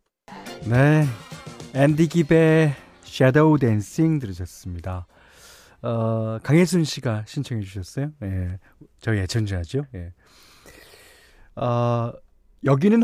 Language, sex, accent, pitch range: Korean, male, native, 105-175 Hz